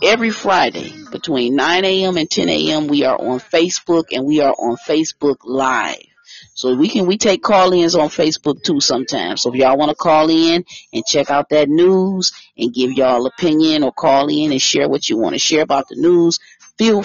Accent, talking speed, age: American, 205 wpm, 40-59